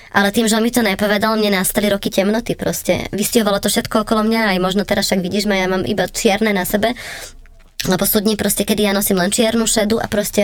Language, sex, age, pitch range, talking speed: Slovak, male, 20-39, 195-220 Hz, 225 wpm